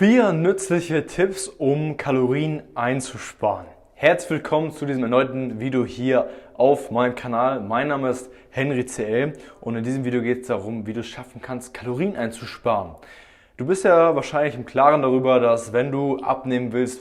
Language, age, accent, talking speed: German, 20-39, German, 165 wpm